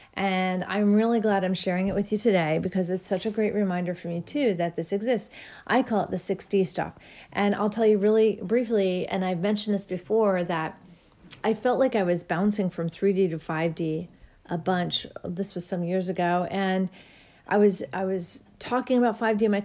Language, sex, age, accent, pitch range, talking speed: English, female, 40-59, American, 185-225 Hz, 205 wpm